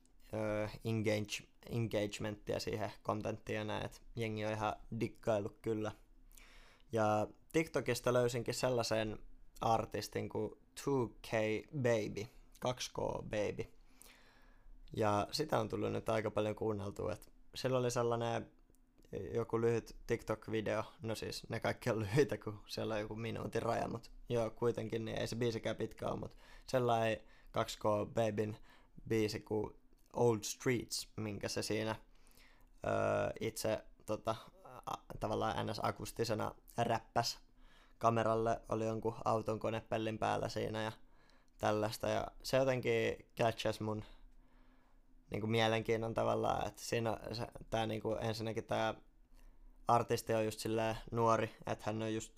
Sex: male